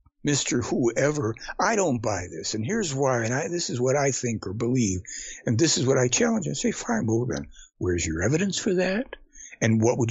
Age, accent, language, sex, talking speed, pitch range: 60-79, American, English, male, 220 wpm, 115-155 Hz